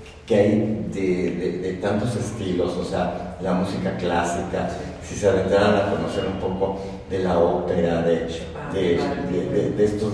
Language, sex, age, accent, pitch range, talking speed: Spanish, male, 50-69, Mexican, 95-115 Hz, 165 wpm